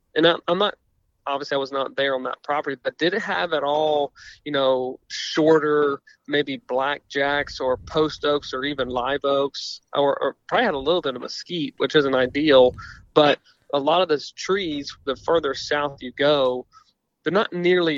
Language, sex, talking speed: English, male, 185 wpm